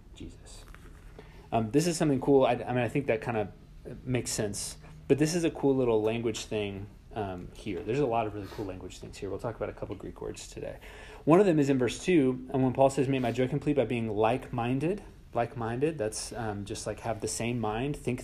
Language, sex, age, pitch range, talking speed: English, male, 30-49, 105-135 Hz, 235 wpm